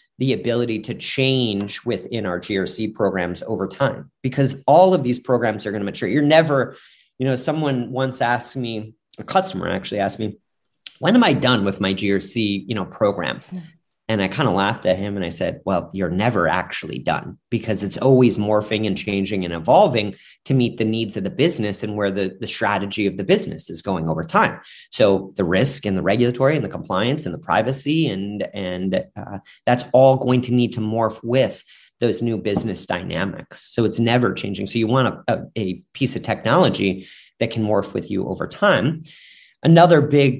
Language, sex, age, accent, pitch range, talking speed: English, male, 30-49, American, 105-130 Hz, 195 wpm